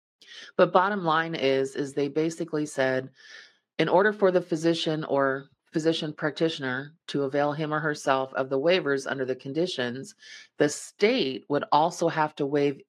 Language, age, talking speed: English, 40-59, 160 wpm